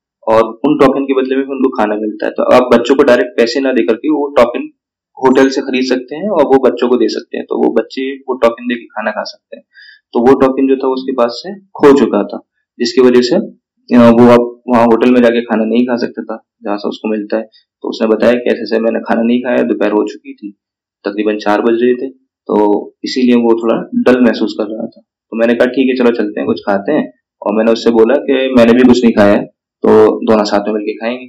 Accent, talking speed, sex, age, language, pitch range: native, 245 wpm, male, 20-39, Hindi, 110-130 Hz